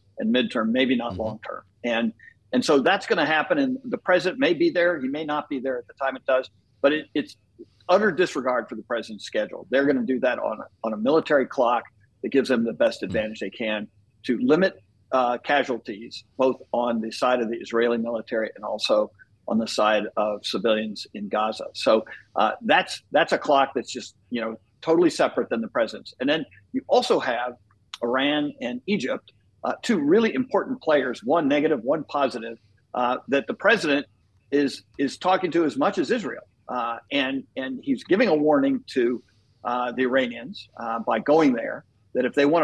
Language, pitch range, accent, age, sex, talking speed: English, 115-150 Hz, American, 50-69, male, 195 wpm